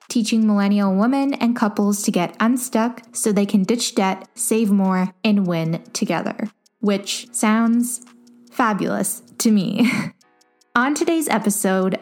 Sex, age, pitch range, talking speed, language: female, 10-29, 195-240 Hz, 130 wpm, English